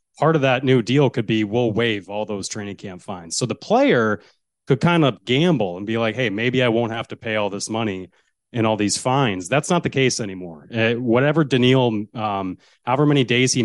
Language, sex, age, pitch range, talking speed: English, male, 30-49, 110-130 Hz, 225 wpm